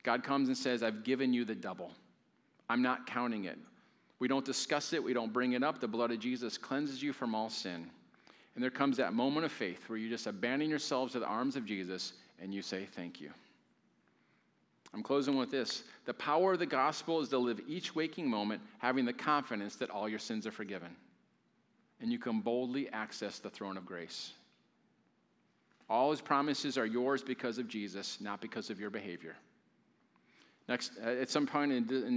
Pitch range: 115-150 Hz